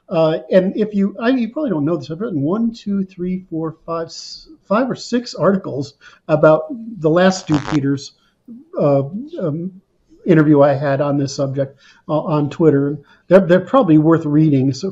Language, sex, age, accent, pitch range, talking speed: English, male, 50-69, American, 150-190 Hz, 175 wpm